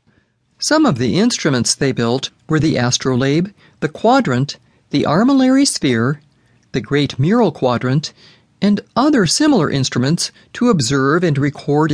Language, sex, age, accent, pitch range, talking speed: English, male, 40-59, American, 135-205 Hz, 130 wpm